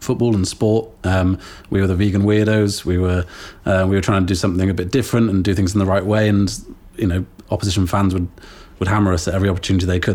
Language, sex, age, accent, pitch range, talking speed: English, male, 30-49, British, 90-105 Hz, 250 wpm